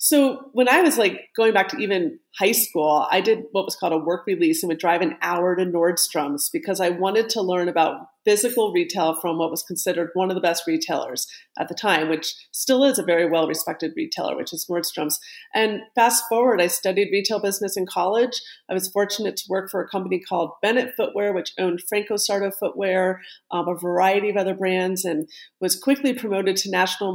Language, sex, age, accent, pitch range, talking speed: English, female, 30-49, American, 180-215 Hz, 205 wpm